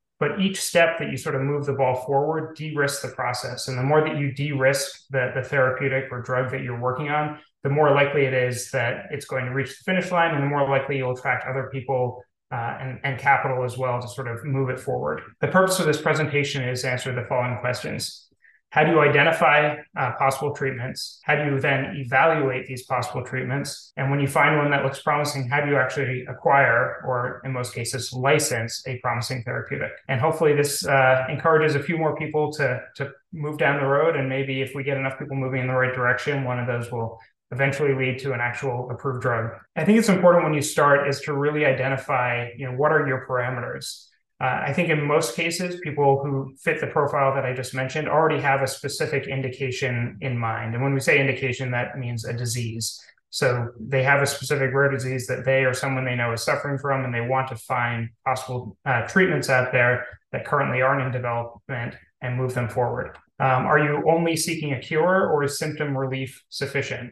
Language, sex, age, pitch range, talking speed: English, male, 30-49, 125-145 Hz, 215 wpm